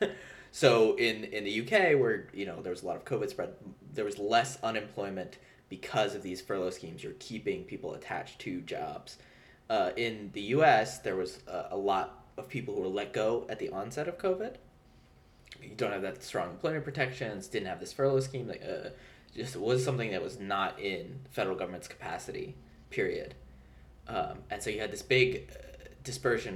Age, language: 20-39, English